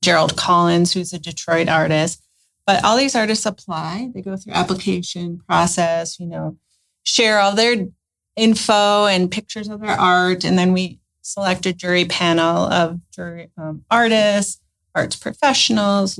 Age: 30-49